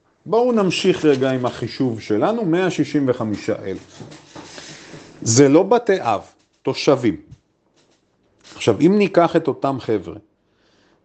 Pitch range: 125-185 Hz